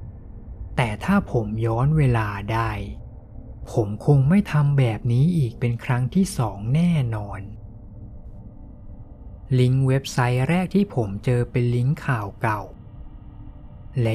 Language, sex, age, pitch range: Thai, male, 20-39, 105-140 Hz